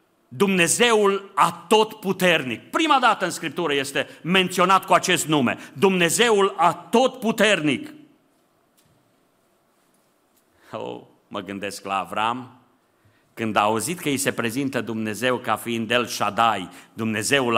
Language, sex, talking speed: Romanian, male, 115 wpm